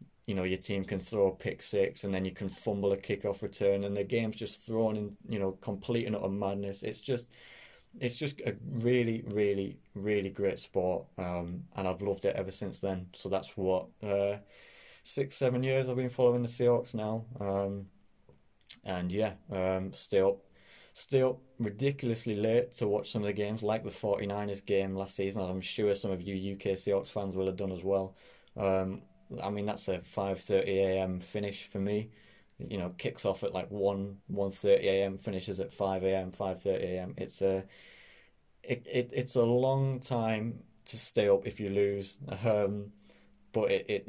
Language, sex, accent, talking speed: English, male, British, 190 wpm